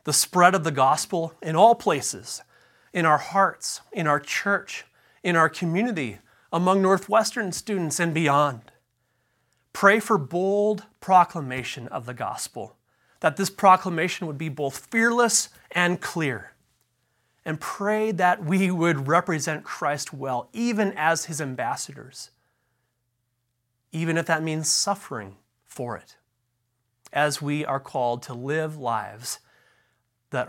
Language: English